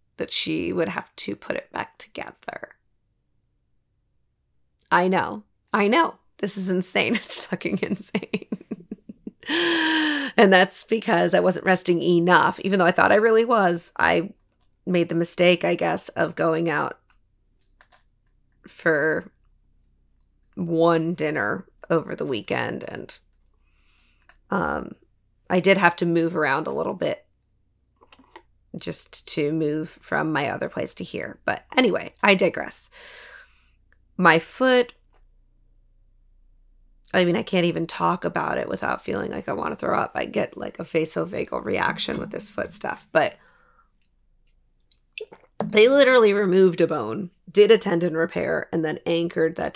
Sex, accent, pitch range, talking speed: female, American, 150-205 Hz, 135 wpm